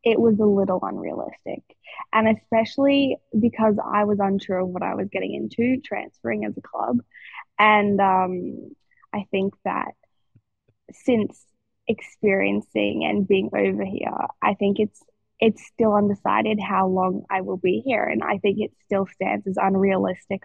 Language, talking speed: English, 155 wpm